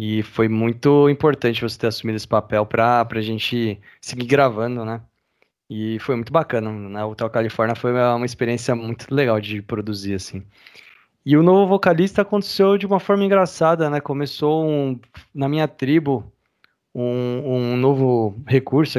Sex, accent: male, Brazilian